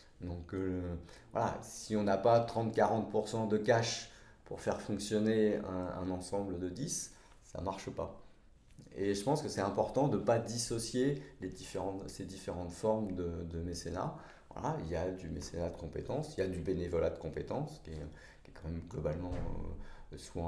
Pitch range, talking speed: 80-95 Hz, 185 wpm